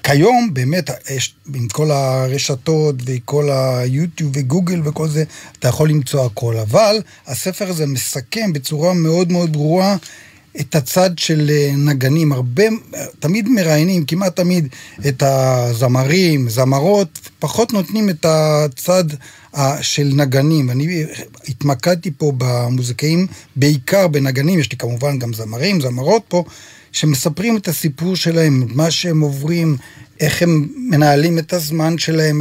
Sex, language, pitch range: male, Hebrew, 140-175 Hz